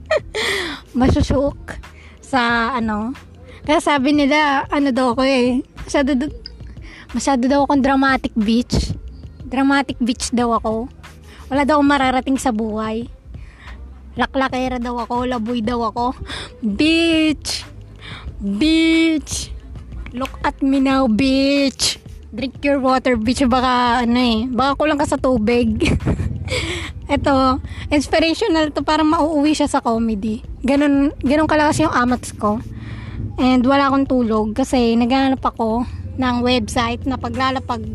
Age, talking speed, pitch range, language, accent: 20-39, 120 wpm, 235-280 Hz, Filipino, native